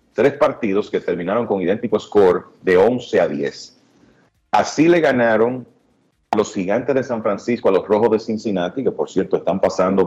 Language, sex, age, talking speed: Spanish, male, 40-59, 180 wpm